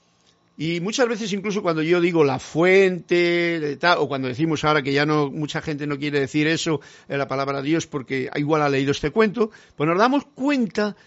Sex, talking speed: male, 190 wpm